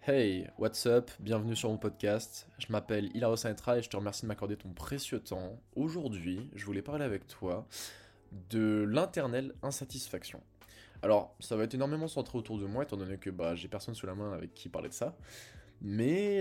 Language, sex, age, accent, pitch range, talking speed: French, male, 20-39, French, 95-115 Hz, 195 wpm